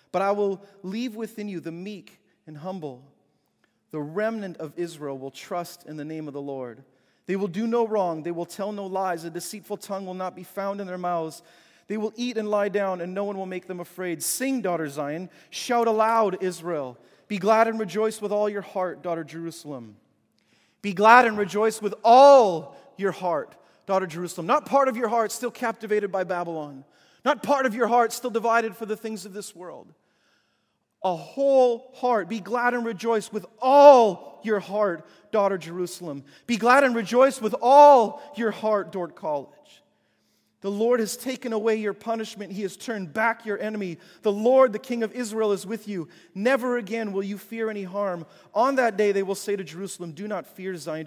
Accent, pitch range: American, 175-225 Hz